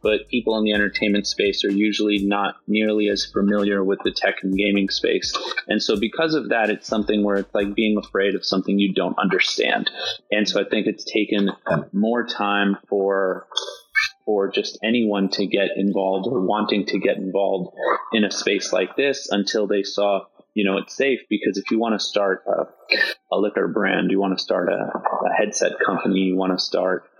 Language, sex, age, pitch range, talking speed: English, male, 30-49, 100-105 Hz, 195 wpm